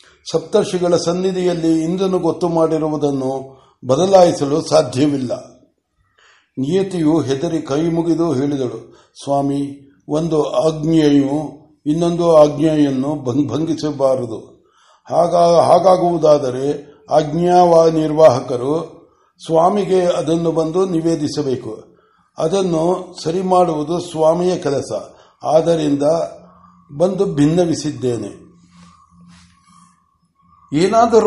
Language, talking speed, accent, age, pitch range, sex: Kannada, 65 wpm, native, 60-79, 140-170 Hz, male